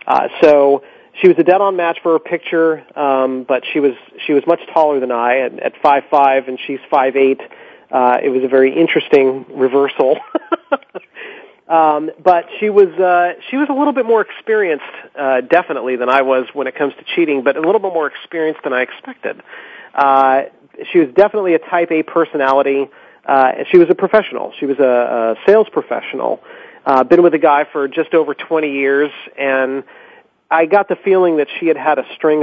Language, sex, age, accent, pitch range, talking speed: English, male, 40-59, American, 130-175 Hz, 200 wpm